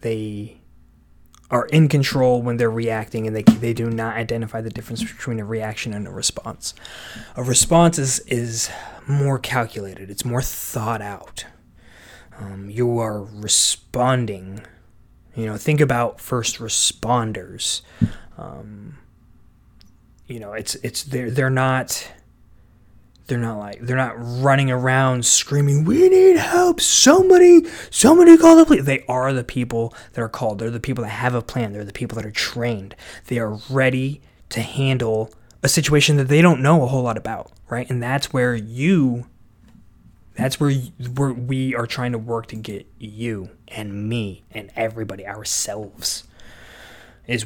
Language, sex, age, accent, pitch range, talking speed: English, male, 20-39, American, 110-130 Hz, 155 wpm